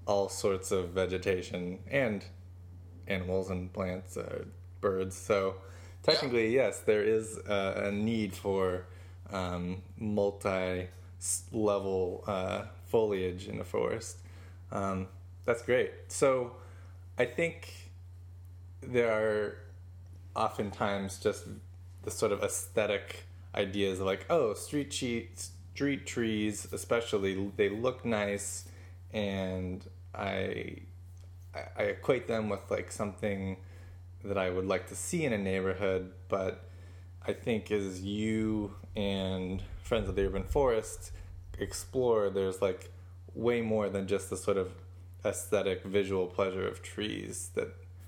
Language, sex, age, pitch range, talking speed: English, male, 20-39, 90-100 Hz, 115 wpm